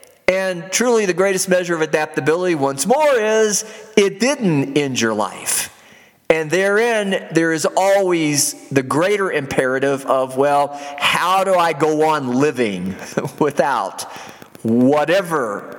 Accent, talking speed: American, 125 wpm